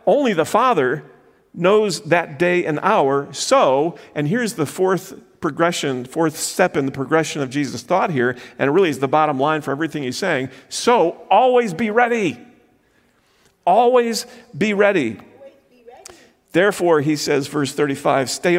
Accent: American